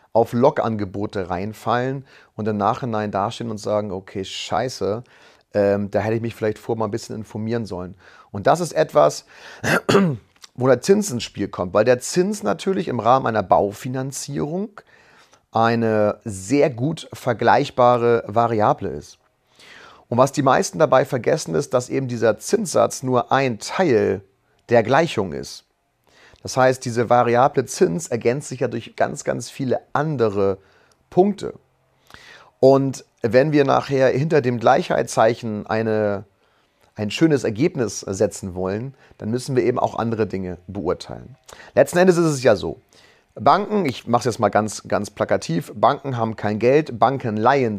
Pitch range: 105-135 Hz